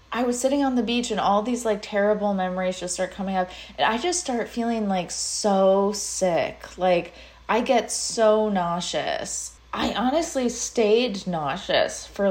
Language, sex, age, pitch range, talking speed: English, female, 20-39, 180-215 Hz, 165 wpm